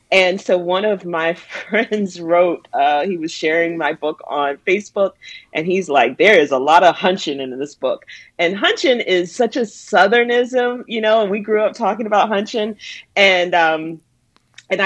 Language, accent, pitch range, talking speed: English, American, 160-200 Hz, 180 wpm